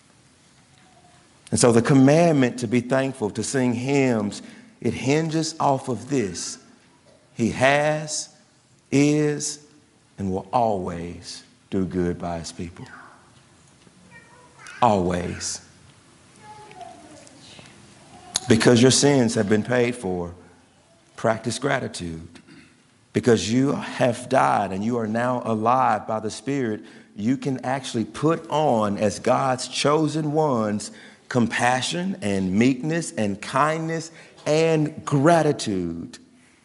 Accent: American